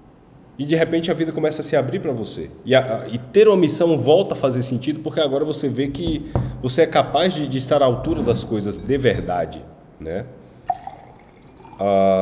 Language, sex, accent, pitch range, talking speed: Portuguese, male, Brazilian, 115-155 Hz, 190 wpm